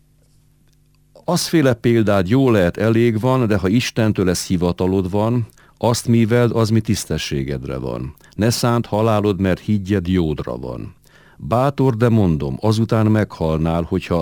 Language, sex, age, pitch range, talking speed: Hungarian, male, 50-69, 85-110 Hz, 130 wpm